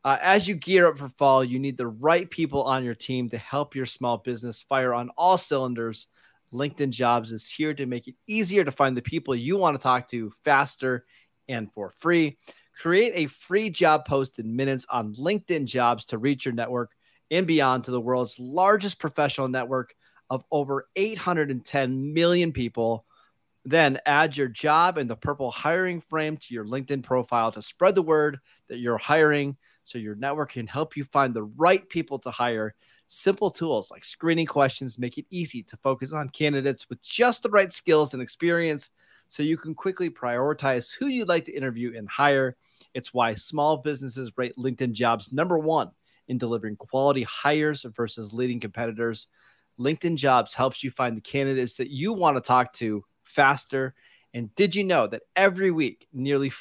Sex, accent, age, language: male, American, 30-49, English